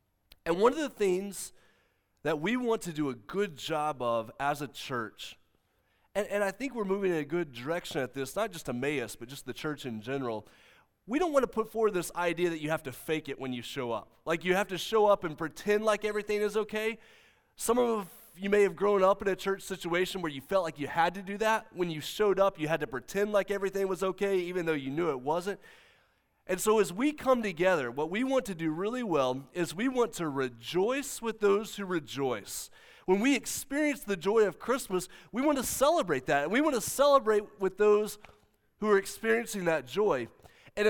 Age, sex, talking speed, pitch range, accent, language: 30-49, male, 225 wpm, 145-210 Hz, American, English